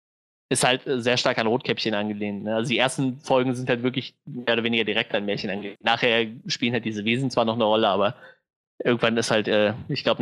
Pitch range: 110-130 Hz